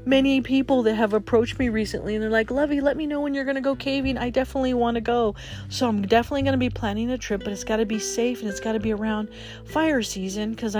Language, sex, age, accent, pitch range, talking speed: English, female, 40-59, American, 200-260 Hz, 265 wpm